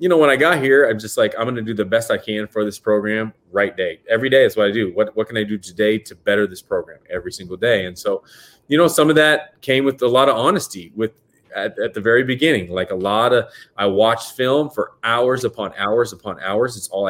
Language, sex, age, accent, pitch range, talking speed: English, male, 30-49, American, 105-135 Hz, 265 wpm